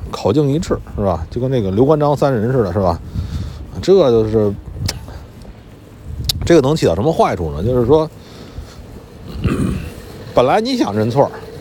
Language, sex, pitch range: Chinese, male, 100-170 Hz